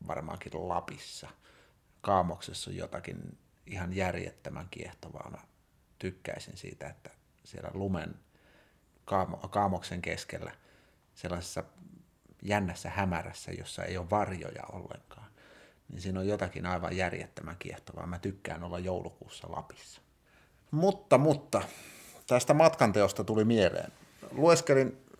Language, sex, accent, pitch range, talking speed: Finnish, male, native, 95-120 Hz, 105 wpm